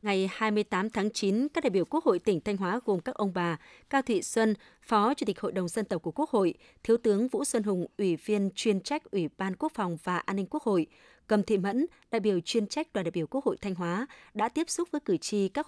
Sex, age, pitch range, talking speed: female, 20-39, 190-255 Hz, 260 wpm